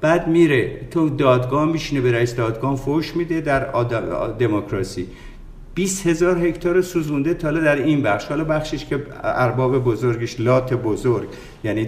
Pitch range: 115-150 Hz